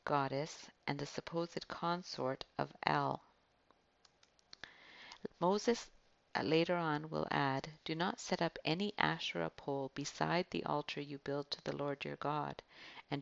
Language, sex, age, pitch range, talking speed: English, female, 50-69, 140-180 Hz, 140 wpm